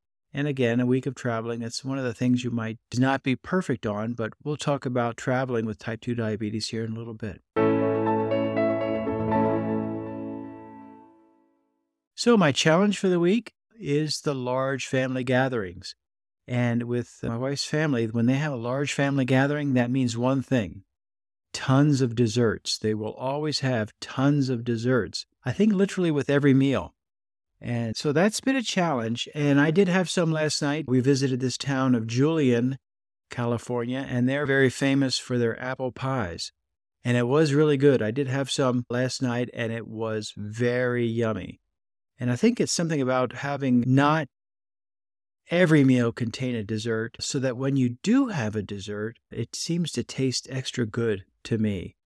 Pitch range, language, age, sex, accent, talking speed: 115-140 Hz, English, 50-69, male, American, 170 wpm